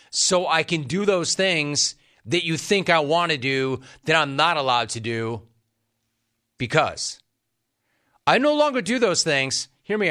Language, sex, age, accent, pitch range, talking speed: English, male, 40-59, American, 130-190 Hz, 165 wpm